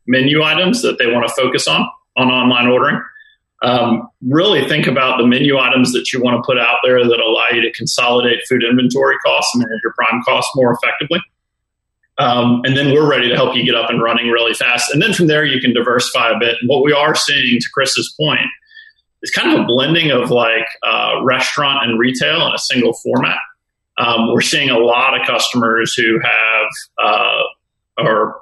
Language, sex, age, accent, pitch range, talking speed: English, male, 30-49, American, 120-150 Hz, 205 wpm